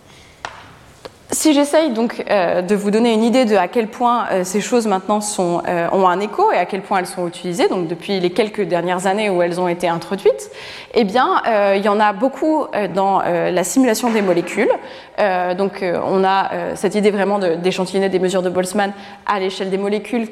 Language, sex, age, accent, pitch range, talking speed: French, female, 20-39, French, 185-230 Hz, 215 wpm